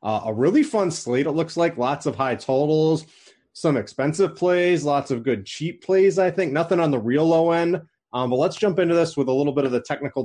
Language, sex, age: English, male, 30-49